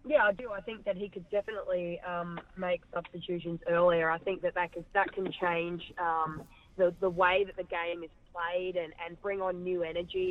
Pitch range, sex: 170-200 Hz, female